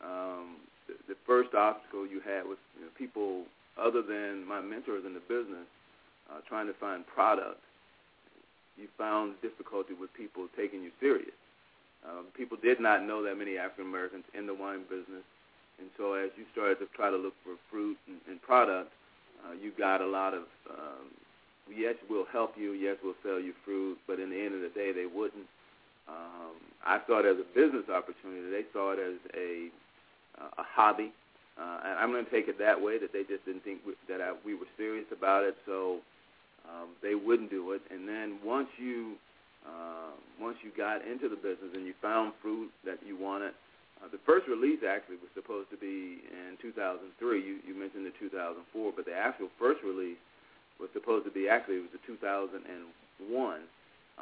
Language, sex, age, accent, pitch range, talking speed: English, male, 40-59, American, 95-110 Hz, 185 wpm